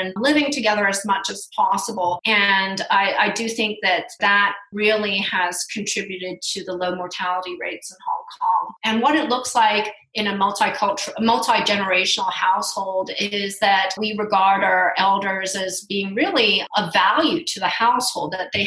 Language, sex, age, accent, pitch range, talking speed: English, female, 30-49, American, 190-220 Hz, 160 wpm